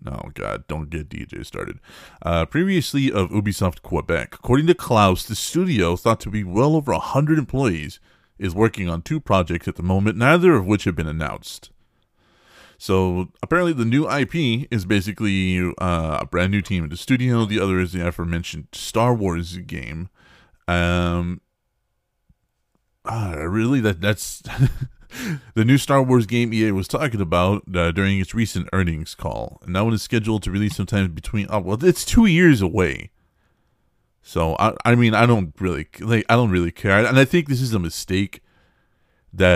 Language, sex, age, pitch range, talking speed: English, male, 30-49, 90-115 Hz, 175 wpm